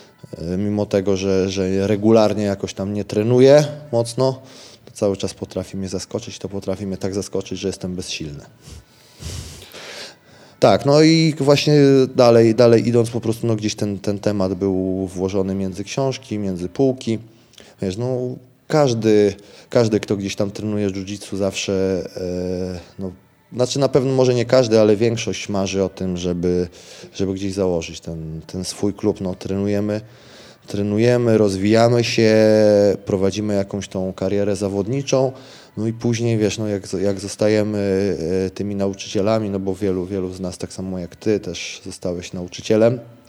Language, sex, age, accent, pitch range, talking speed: Polish, male, 20-39, native, 95-115 Hz, 150 wpm